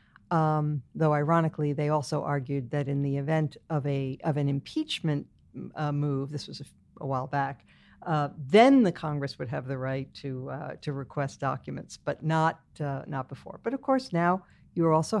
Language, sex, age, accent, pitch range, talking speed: English, female, 60-79, American, 145-185 Hz, 185 wpm